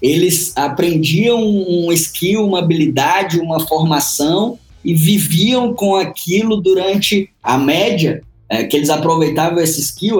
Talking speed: 120 wpm